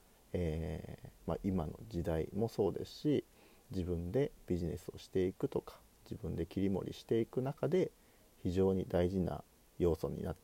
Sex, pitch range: male, 90-125 Hz